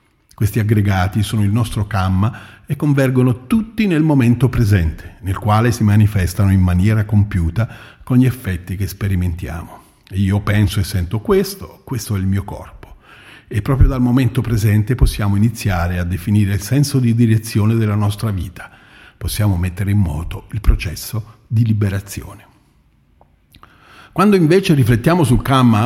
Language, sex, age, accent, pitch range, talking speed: Italian, male, 50-69, native, 100-125 Hz, 145 wpm